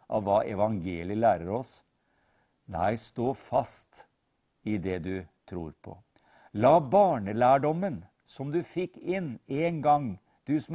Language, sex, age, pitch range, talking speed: English, male, 50-69, 105-145 Hz, 130 wpm